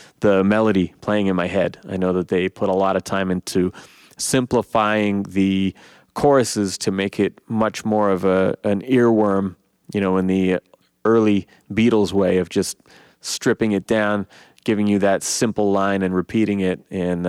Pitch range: 95-115 Hz